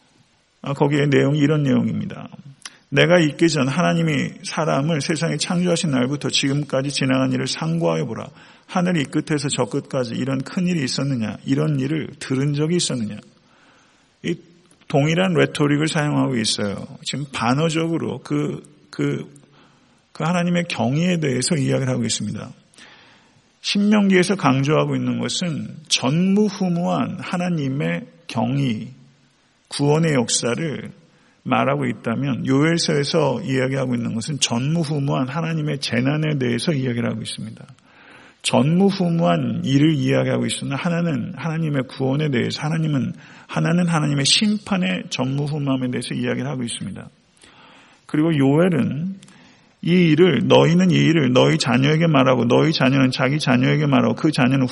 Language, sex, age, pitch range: Korean, male, 40-59, 130-170 Hz